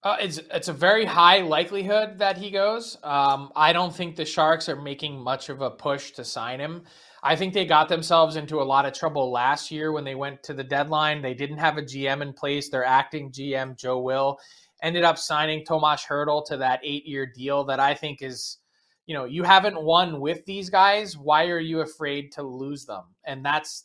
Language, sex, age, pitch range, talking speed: English, male, 20-39, 140-170 Hz, 215 wpm